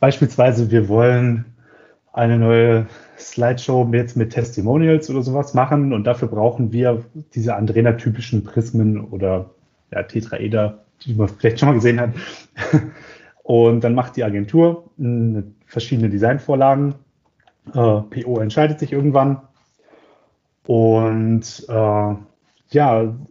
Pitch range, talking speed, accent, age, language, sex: 110-130 Hz, 110 wpm, German, 30-49, German, male